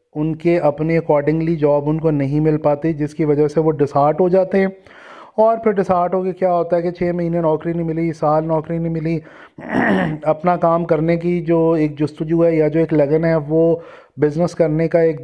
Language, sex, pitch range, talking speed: Urdu, male, 155-185 Hz, 220 wpm